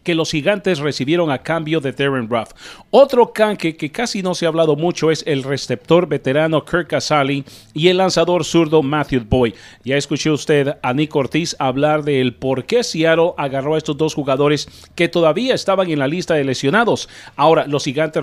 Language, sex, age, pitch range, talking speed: English, male, 40-59, 135-170 Hz, 190 wpm